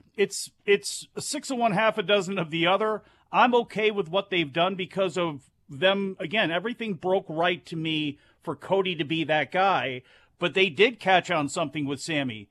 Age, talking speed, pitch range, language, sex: 40-59, 190 wpm, 155-200 Hz, English, male